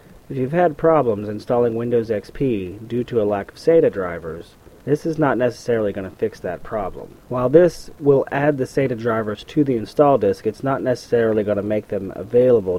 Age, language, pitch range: 30-49, English, 100-130 Hz